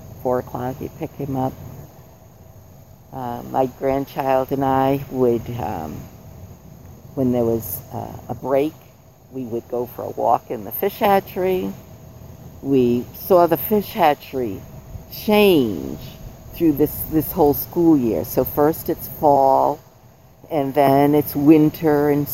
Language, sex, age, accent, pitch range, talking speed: English, female, 50-69, American, 120-145 Hz, 135 wpm